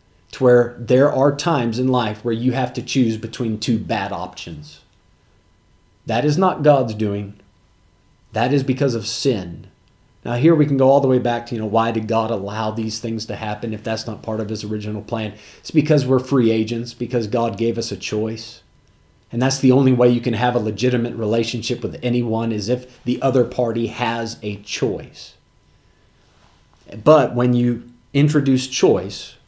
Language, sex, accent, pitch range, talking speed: English, male, American, 110-130 Hz, 185 wpm